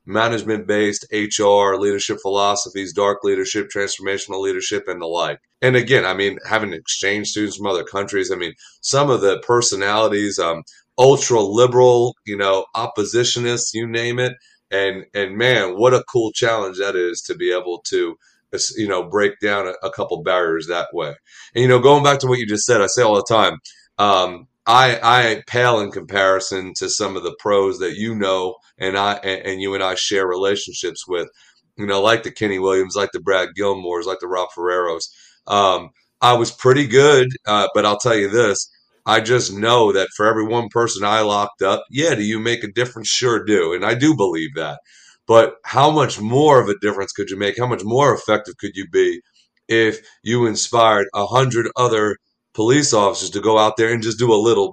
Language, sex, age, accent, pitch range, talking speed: English, male, 30-49, American, 100-125 Hz, 195 wpm